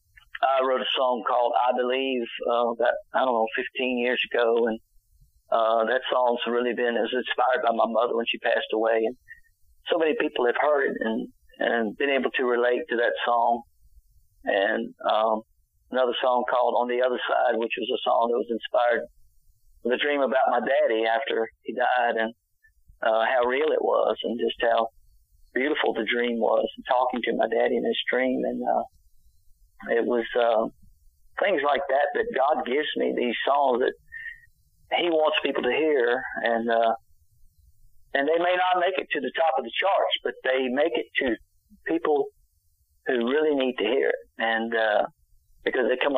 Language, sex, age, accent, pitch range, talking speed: English, male, 50-69, American, 115-150 Hz, 185 wpm